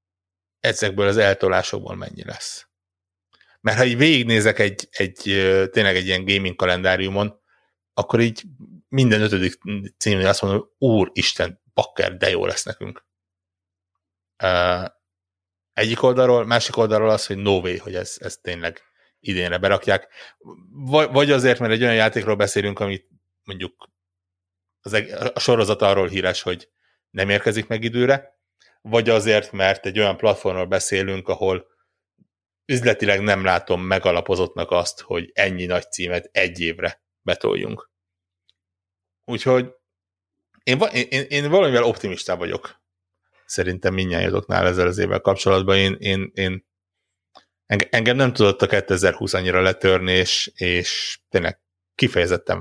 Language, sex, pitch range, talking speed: Hungarian, male, 90-110 Hz, 125 wpm